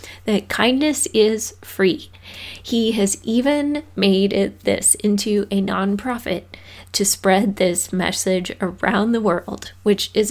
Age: 20-39